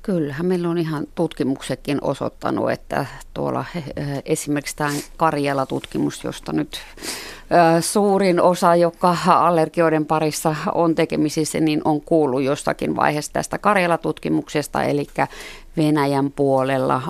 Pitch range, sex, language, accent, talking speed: 135-160 Hz, female, Finnish, native, 105 wpm